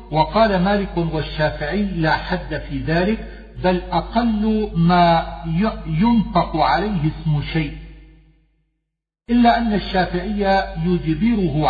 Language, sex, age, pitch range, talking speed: Arabic, male, 50-69, 155-185 Hz, 90 wpm